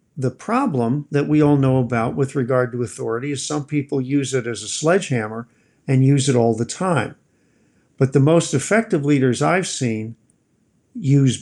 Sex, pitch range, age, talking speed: male, 125-150 Hz, 50-69, 175 wpm